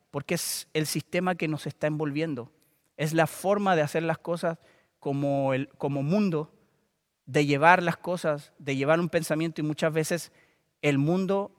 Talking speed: 165 wpm